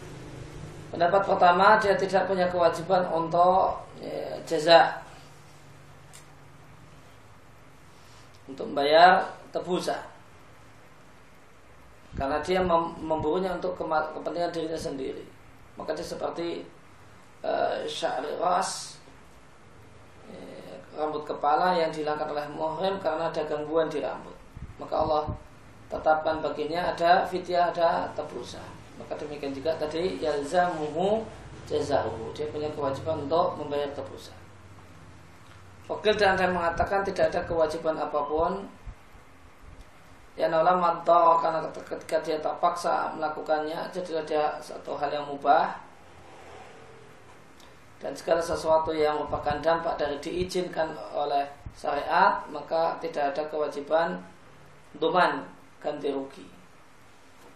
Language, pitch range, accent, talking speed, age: Indonesian, 145-170 Hz, native, 100 wpm, 20-39